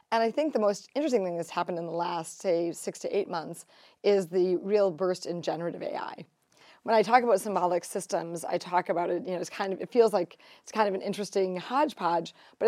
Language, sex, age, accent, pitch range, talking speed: English, female, 30-49, American, 170-200 Hz, 230 wpm